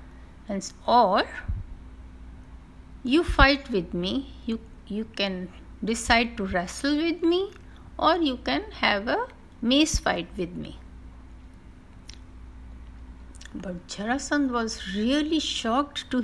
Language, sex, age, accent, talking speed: Hindi, female, 60-79, native, 105 wpm